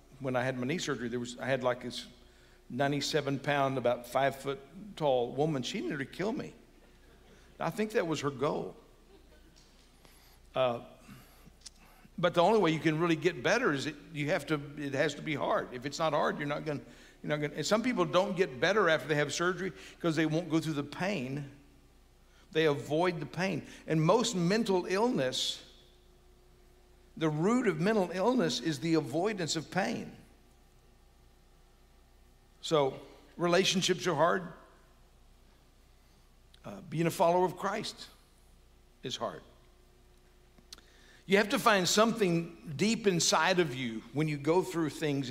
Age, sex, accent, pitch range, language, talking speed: 60-79, male, American, 120-170 Hz, English, 160 wpm